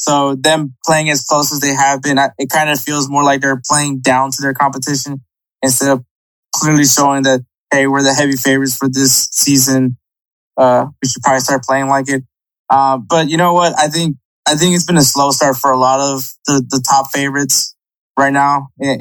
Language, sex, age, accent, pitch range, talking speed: English, male, 20-39, American, 135-150 Hz, 215 wpm